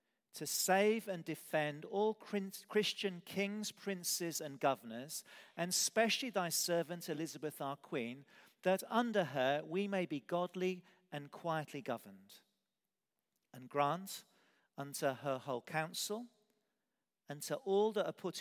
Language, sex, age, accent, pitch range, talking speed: English, male, 50-69, British, 130-195 Hz, 125 wpm